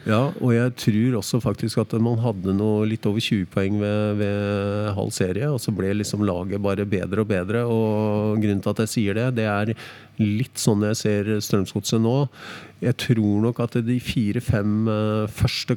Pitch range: 100-115 Hz